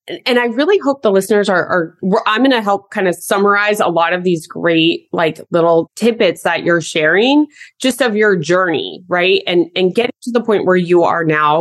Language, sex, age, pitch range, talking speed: English, female, 20-39, 170-240 Hz, 210 wpm